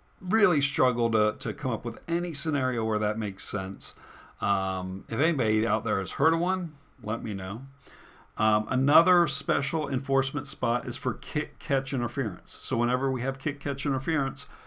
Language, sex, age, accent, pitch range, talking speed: English, male, 50-69, American, 110-140 Hz, 170 wpm